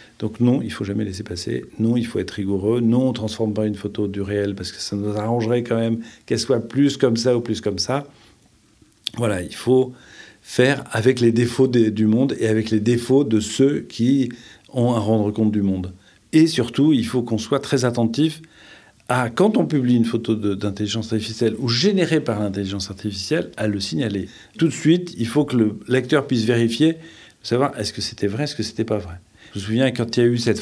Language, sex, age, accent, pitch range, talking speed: French, male, 40-59, French, 105-135 Hz, 225 wpm